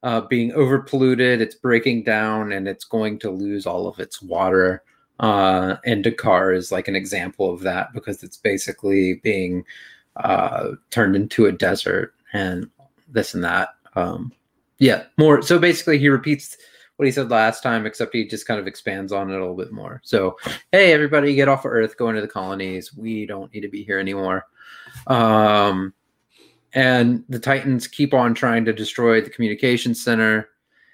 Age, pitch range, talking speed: 30-49, 105-125 Hz, 180 wpm